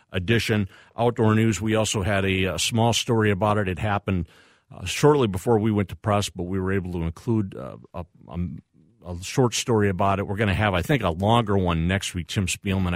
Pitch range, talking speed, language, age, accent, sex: 90-115 Hz, 215 wpm, English, 50-69, American, male